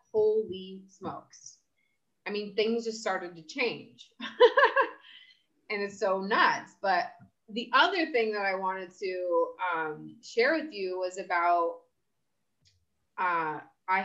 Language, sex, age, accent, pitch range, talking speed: English, female, 30-49, American, 170-240 Hz, 125 wpm